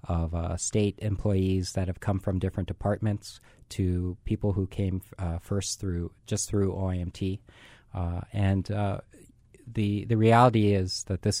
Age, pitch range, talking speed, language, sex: 40-59, 90-105 Hz, 155 wpm, English, male